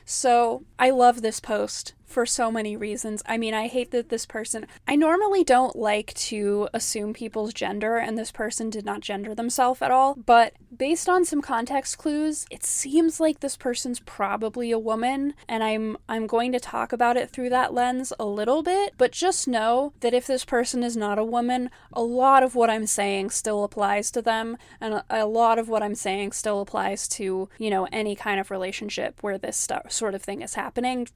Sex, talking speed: female, 205 wpm